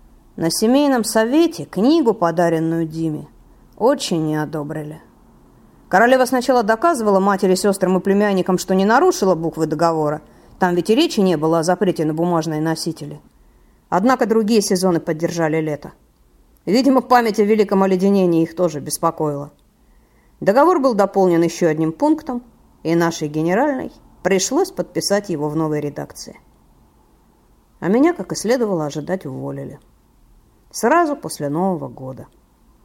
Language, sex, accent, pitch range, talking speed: Russian, female, native, 160-225 Hz, 130 wpm